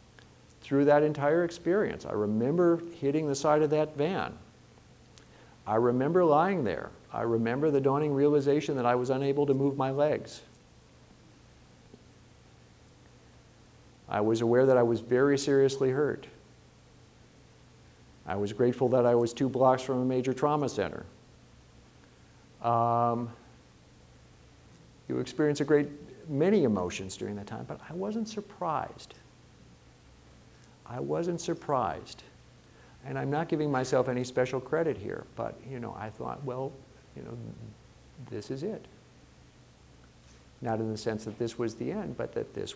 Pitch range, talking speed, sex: 110-140 Hz, 140 wpm, male